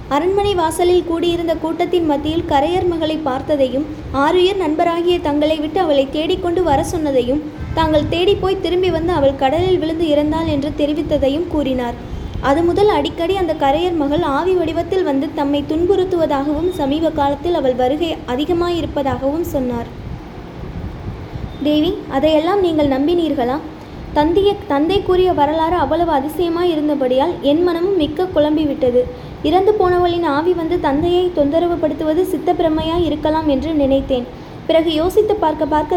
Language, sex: Tamil, female